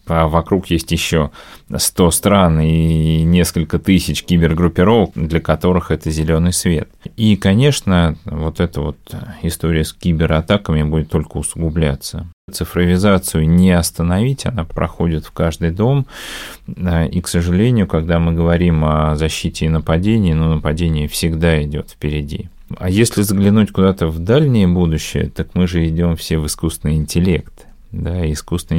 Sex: male